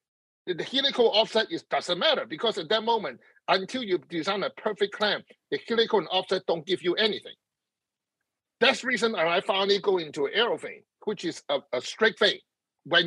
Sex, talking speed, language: male, 185 wpm, English